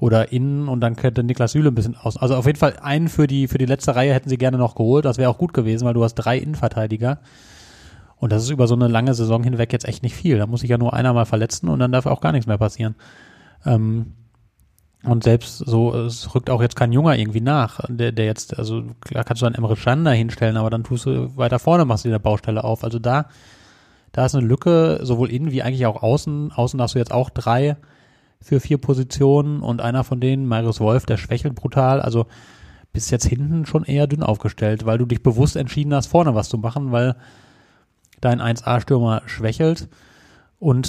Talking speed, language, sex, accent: 225 wpm, German, male, German